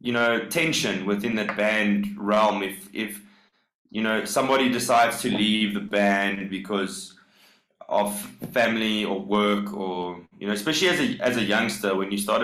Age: 20-39